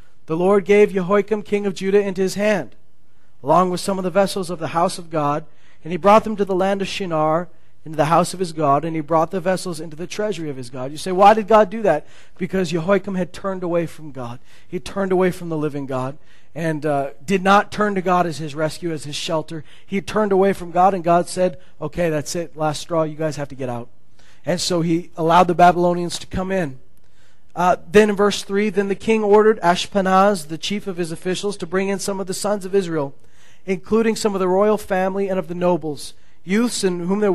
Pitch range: 160-195 Hz